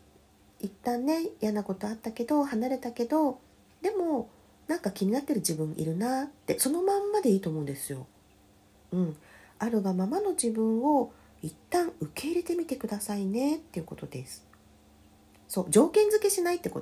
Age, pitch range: 40-59, 175-270 Hz